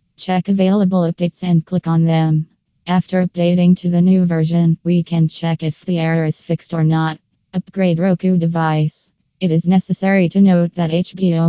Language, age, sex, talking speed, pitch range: English, 20-39, female, 170 wpm, 165-185 Hz